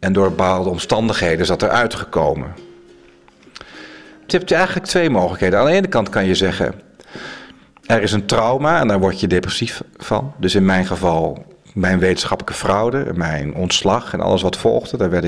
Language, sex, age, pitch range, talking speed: Dutch, male, 40-59, 95-110 Hz, 175 wpm